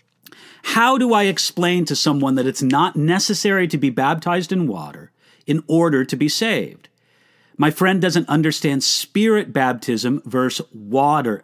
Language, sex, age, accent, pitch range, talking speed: English, male, 50-69, American, 140-190 Hz, 145 wpm